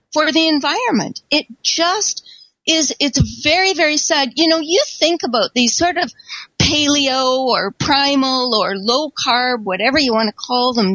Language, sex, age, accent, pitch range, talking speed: English, female, 40-59, American, 250-325 Hz, 160 wpm